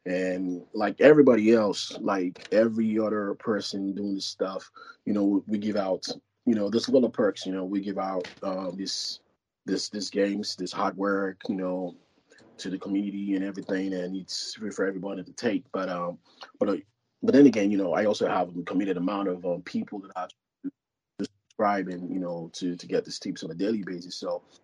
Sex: male